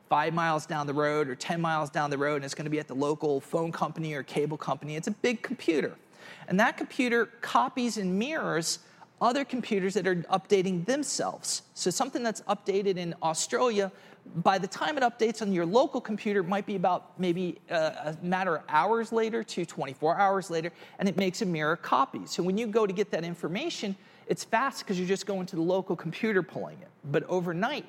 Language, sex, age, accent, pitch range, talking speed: English, male, 40-59, American, 165-210 Hz, 210 wpm